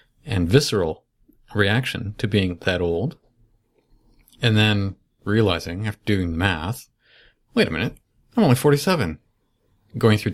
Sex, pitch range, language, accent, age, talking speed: male, 95-120 Hz, English, American, 40-59, 120 wpm